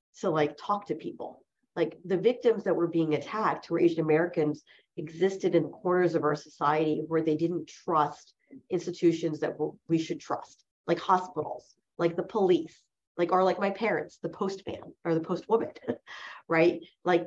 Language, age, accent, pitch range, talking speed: English, 30-49, American, 155-185 Hz, 165 wpm